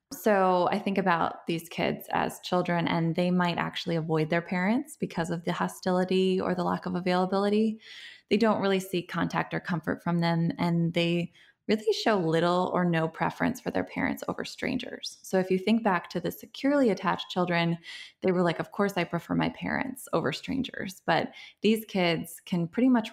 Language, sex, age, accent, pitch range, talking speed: English, female, 20-39, American, 165-195 Hz, 190 wpm